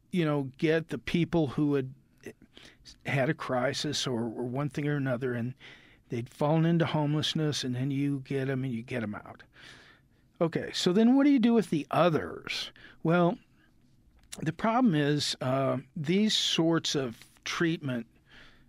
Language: English